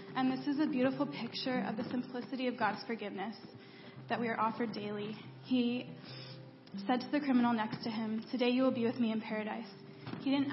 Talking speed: 200 wpm